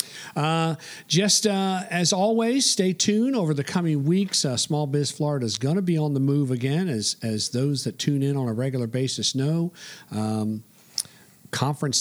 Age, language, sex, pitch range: 50-69, English, male, 120-160 Hz